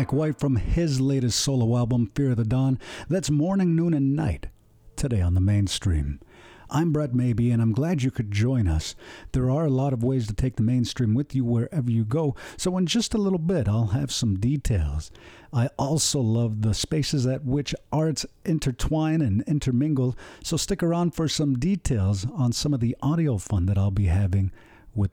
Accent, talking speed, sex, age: American, 195 wpm, male, 50-69